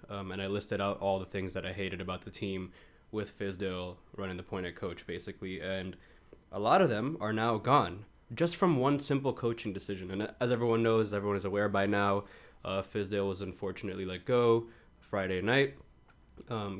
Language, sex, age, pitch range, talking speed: English, male, 20-39, 95-110 Hz, 195 wpm